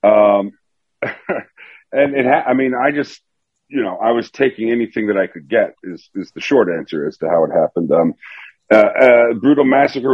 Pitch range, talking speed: 95-120 Hz, 195 wpm